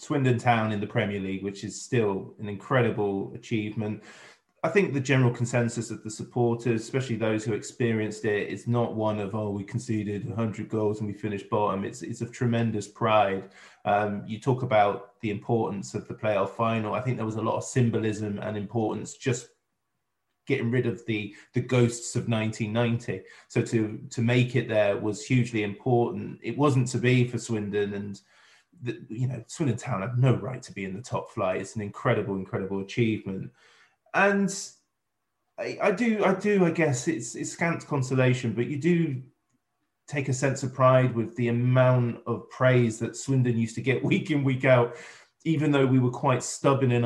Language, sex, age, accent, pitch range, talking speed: English, male, 20-39, British, 110-130 Hz, 185 wpm